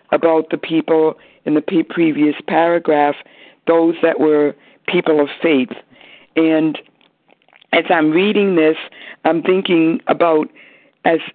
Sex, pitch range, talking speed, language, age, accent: female, 155-180 Hz, 120 wpm, English, 60-79, American